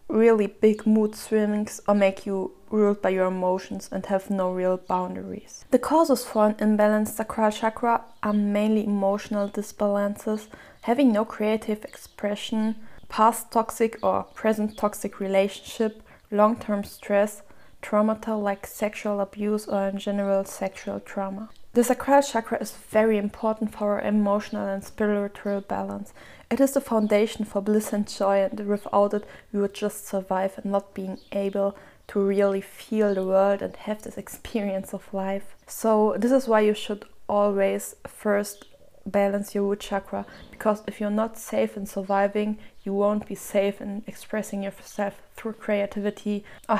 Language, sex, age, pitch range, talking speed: German, female, 20-39, 200-220 Hz, 155 wpm